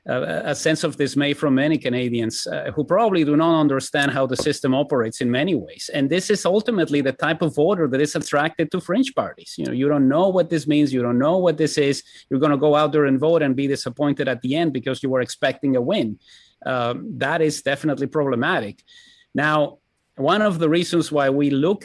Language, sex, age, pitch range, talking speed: English, male, 30-49, 135-165 Hz, 225 wpm